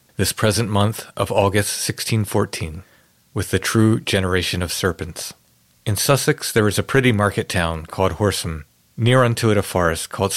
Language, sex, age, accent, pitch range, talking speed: English, male, 40-59, American, 95-115 Hz, 160 wpm